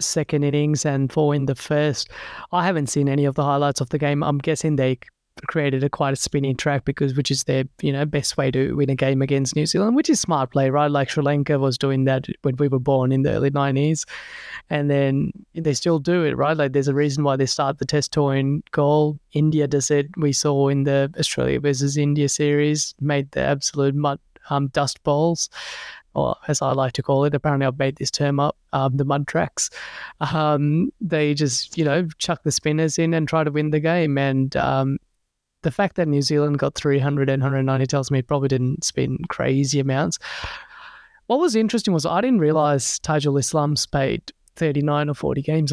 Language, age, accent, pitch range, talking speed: English, 20-39, Australian, 140-155 Hz, 210 wpm